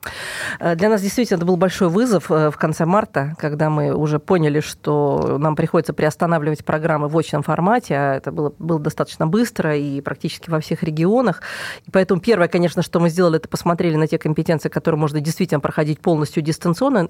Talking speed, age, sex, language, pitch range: 170 wpm, 30-49, female, Russian, 160-195 Hz